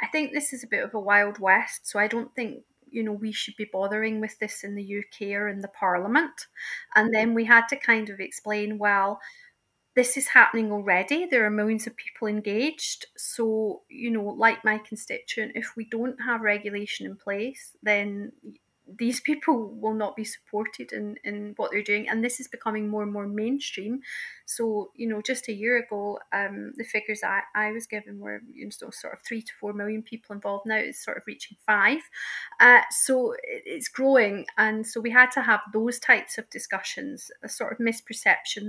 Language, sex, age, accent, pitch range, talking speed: English, female, 30-49, British, 210-245 Hz, 205 wpm